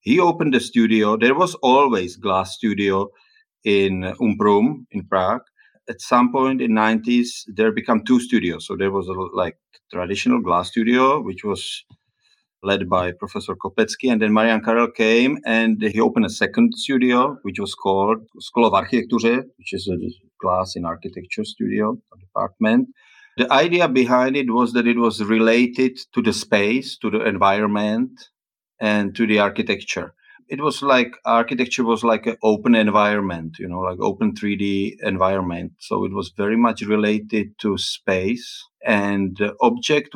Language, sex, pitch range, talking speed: English, male, 100-125 Hz, 160 wpm